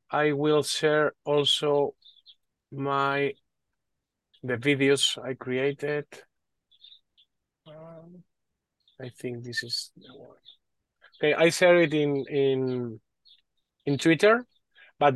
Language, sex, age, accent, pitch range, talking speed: English, male, 30-49, Spanish, 130-160 Hz, 100 wpm